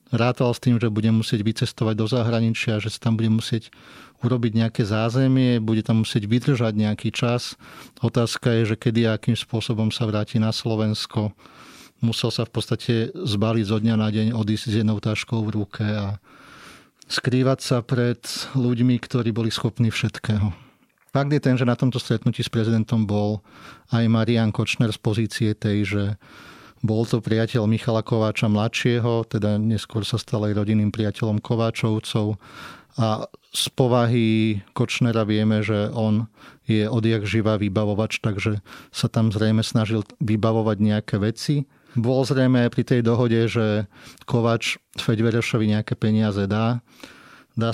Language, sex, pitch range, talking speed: Slovak, male, 110-120 Hz, 150 wpm